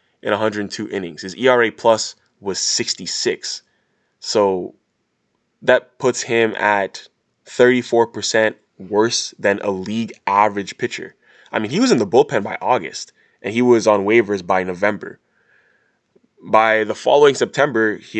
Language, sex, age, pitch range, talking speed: English, male, 20-39, 100-120 Hz, 135 wpm